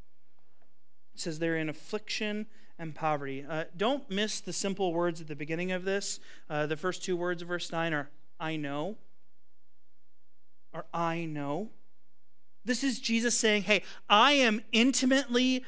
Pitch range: 165-235 Hz